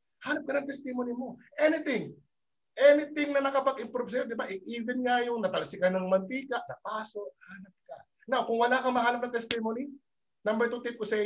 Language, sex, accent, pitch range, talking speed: Filipino, male, native, 160-240 Hz, 180 wpm